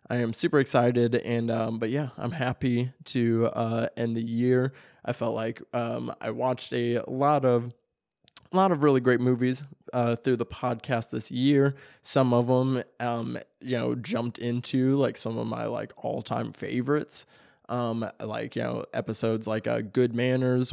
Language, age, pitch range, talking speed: English, 20-39, 115-130 Hz, 175 wpm